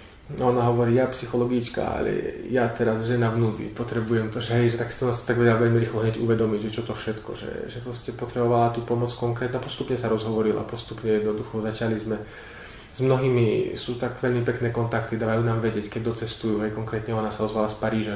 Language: Slovak